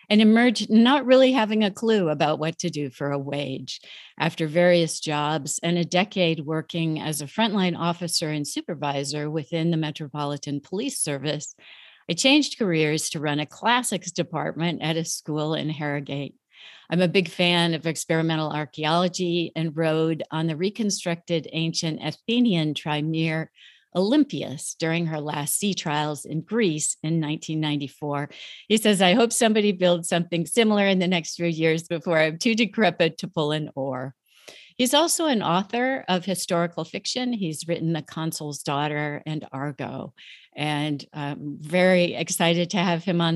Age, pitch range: 60-79, 155-185 Hz